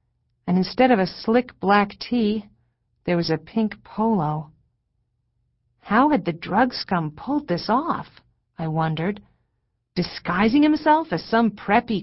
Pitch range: 120-200 Hz